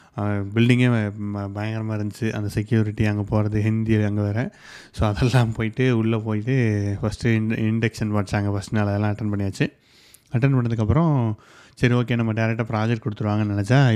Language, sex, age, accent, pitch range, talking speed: Tamil, male, 20-39, native, 105-120 Hz, 135 wpm